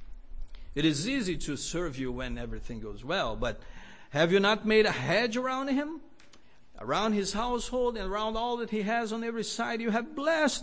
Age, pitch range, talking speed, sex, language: 50-69, 155-220 Hz, 190 wpm, male, English